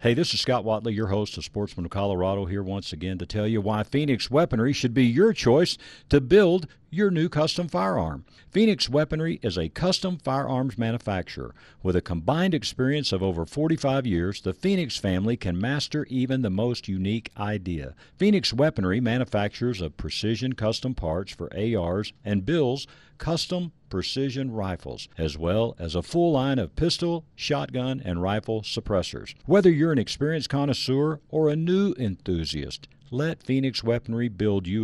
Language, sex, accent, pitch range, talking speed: English, male, American, 100-150 Hz, 160 wpm